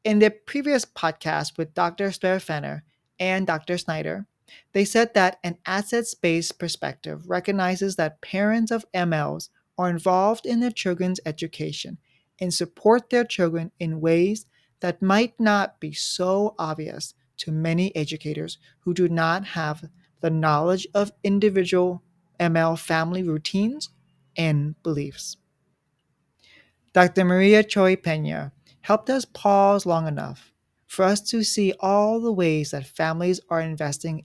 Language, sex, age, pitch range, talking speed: English, male, 40-59, 155-195 Hz, 130 wpm